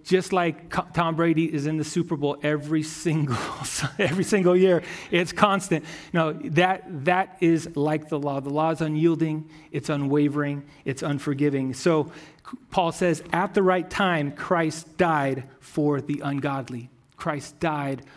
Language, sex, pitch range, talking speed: English, male, 150-180 Hz, 150 wpm